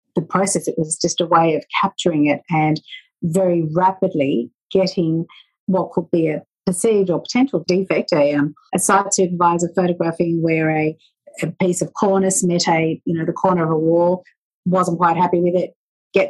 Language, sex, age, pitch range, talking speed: English, female, 50-69, 160-190 Hz, 180 wpm